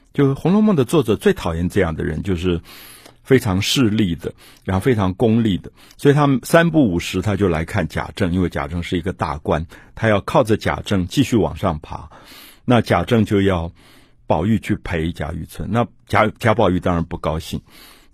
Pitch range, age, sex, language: 85-120 Hz, 50-69, male, Chinese